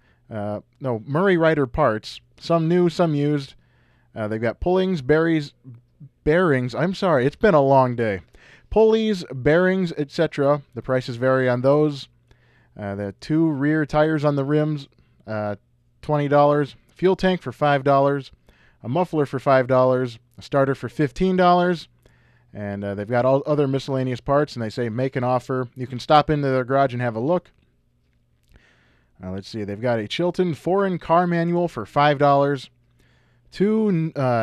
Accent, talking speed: American, 155 wpm